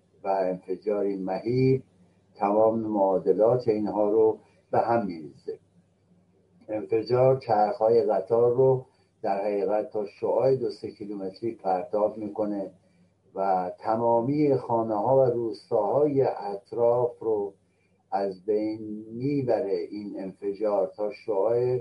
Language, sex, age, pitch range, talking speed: Persian, male, 60-79, 100-130 Hz, 105 wpm